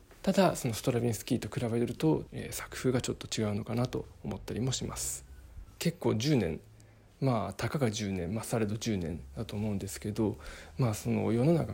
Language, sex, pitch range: Japanese, male, 100-125 Hz